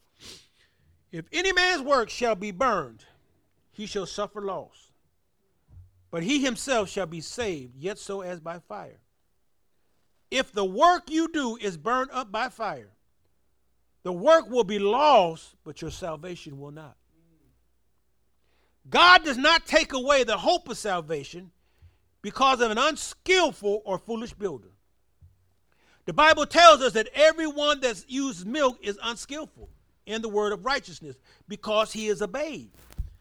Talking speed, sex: 145 wpm, male